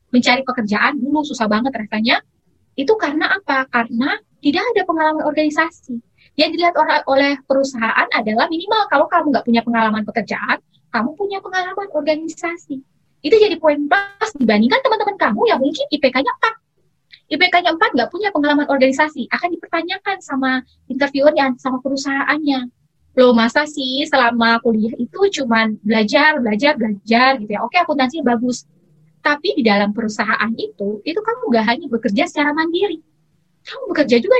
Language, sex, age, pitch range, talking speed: Indonesian, female, 20-39, 240-335 Hz, 150 wpm